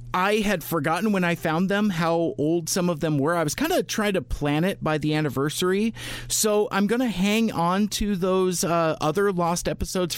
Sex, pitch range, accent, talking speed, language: male, 140-180 Hz, American, 210 wpm, English